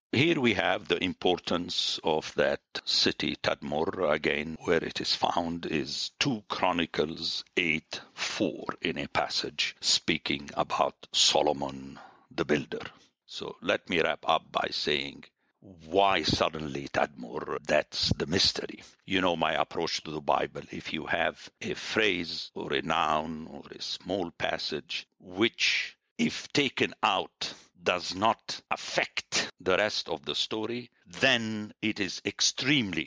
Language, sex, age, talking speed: English, male, 60-79, 135 wpm